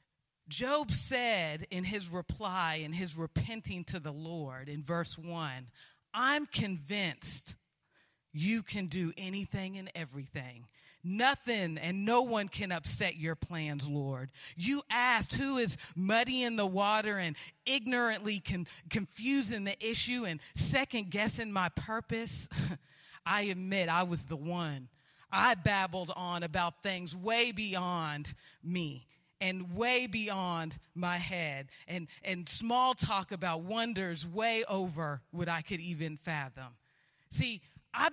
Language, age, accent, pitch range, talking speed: English, 40-59, American, 165-215 Hz, 125 wpm